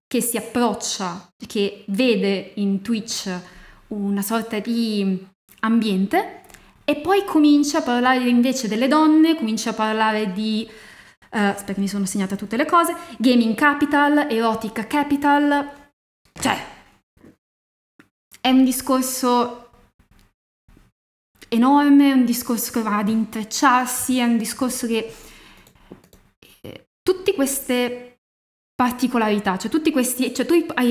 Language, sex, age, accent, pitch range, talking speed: Italian, female, 20-39, native, 205-260 Hz, 120 wpm